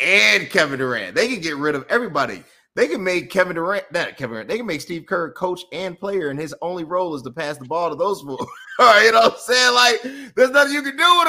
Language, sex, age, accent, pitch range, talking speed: English, male, 30-49, American, 120-185 Hz, 270 wpm